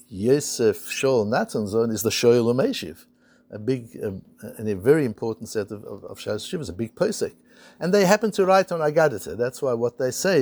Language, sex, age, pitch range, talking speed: English, male, 60-79, 110-145 Hz, 190 wpm